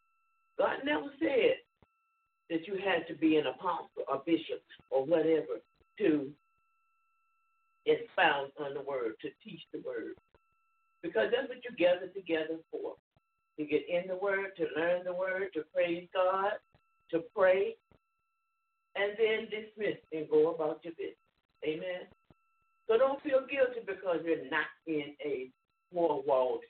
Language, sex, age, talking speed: English, male, 60-79, 140 wpm